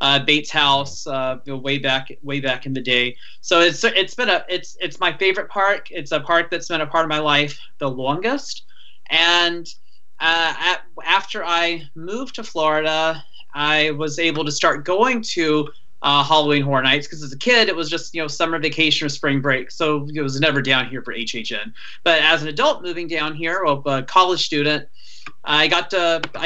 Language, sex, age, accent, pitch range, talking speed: English, male, 20-39, American, 145-180 Hz, 200 wpm